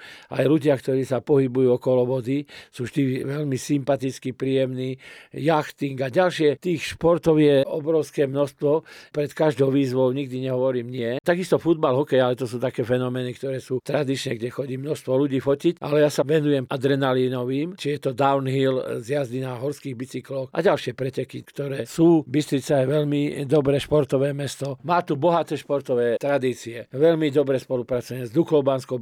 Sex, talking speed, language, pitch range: male, 155 wpm, Slovak, 130-150 Hz